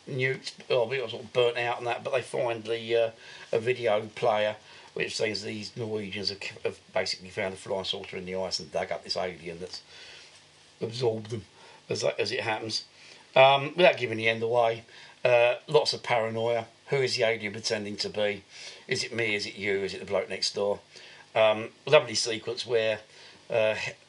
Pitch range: 110-145 Hz